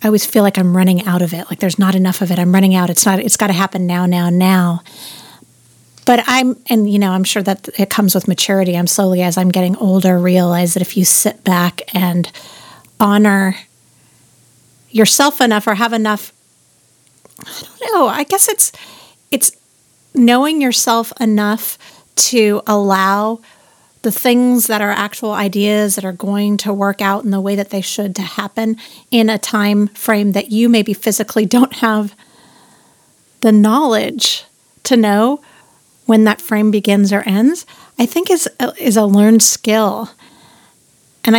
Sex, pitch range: female, 190-225 Hz